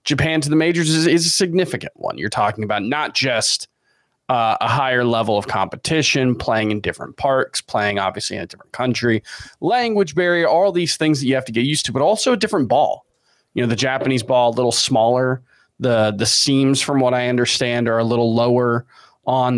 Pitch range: 110-140 Hz